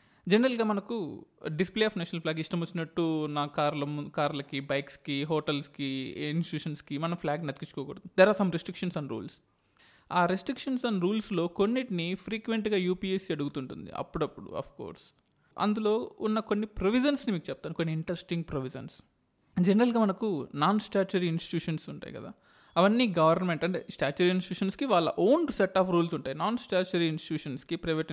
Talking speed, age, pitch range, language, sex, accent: 140 wpm, 20-39, 155-205 Hz, Telugu, male, native